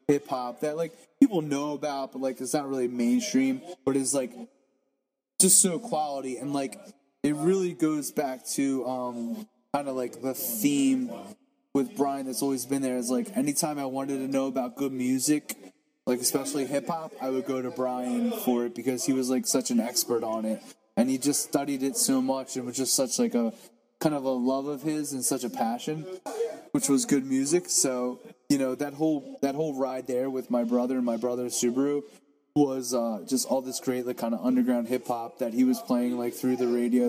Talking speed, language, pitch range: 210 wpm, English, 125-150 Hz